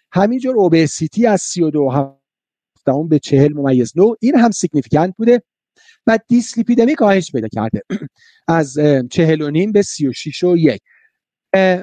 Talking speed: 130 wpm